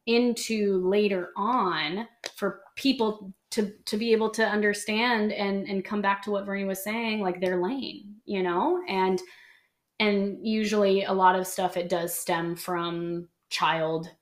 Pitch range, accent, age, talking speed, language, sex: 175-205 Hz, American, 20-39, 155 wpm, English, female